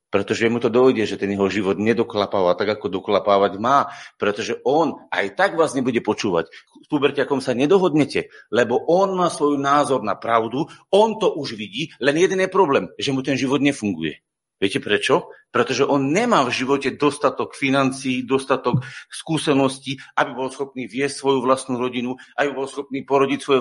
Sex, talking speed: male, 170 wpm